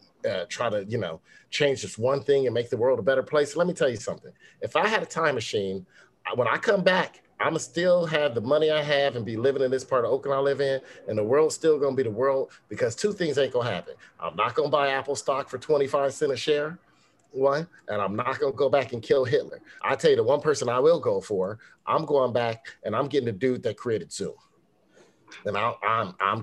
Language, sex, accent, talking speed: English, male, American, 250 wpm